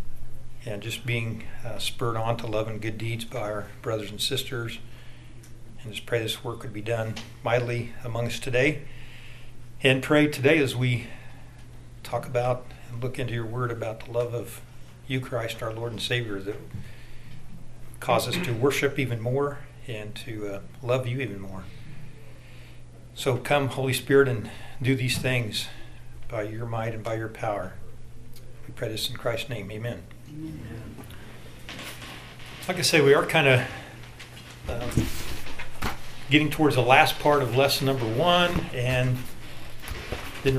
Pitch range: 115-130 Hz